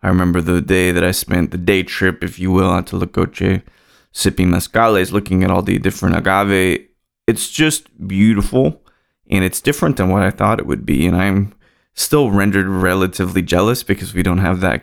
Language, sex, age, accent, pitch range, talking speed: English, male, 20-39, American, 90-125 Hz, 195 wpm